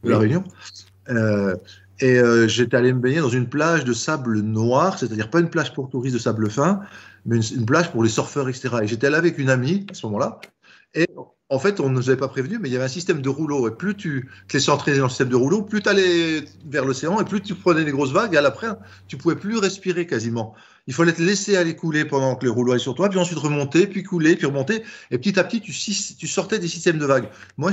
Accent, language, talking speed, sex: French, French, 260 wpm, male